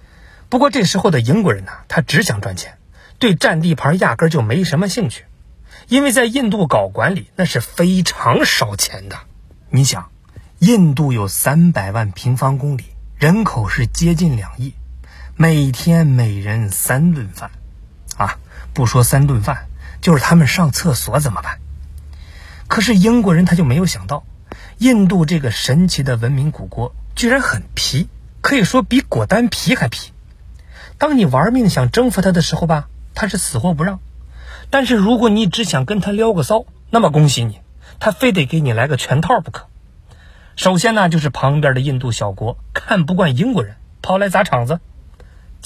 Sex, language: male, Chinese